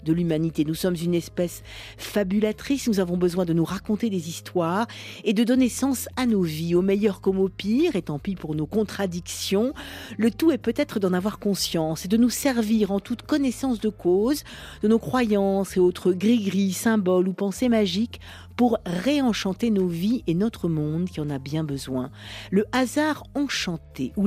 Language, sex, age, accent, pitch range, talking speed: French, female, 50-69, French, 180-240 Hz, 185 wpm